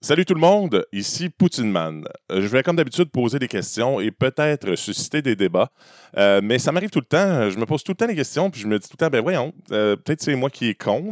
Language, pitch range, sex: French, 110-175 Hz, male